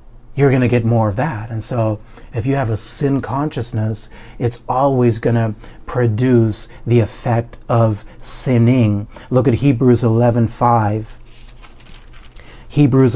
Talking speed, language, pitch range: 130 wpm, English, 115-125 Hz